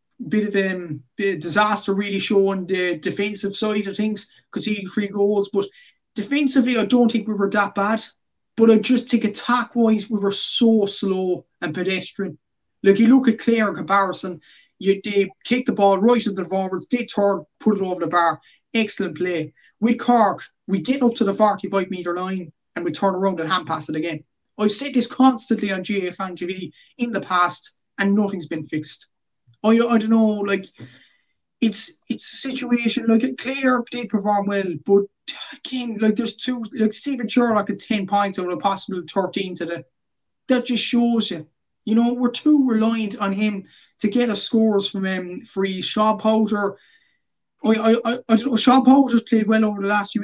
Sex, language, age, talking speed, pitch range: male, English, 20-39, 190 wpm, 195-235 Hz